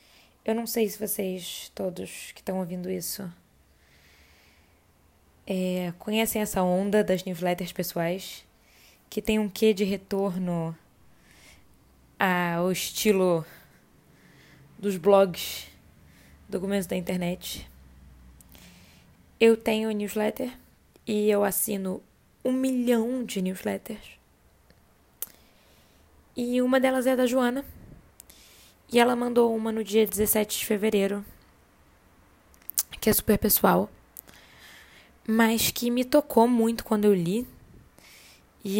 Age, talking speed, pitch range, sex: 10-29, 110 wpm, 175-225 Hz, female